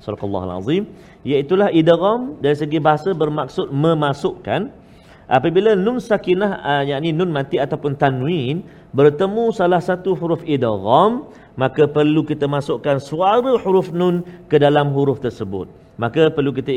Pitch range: 135-195 Hz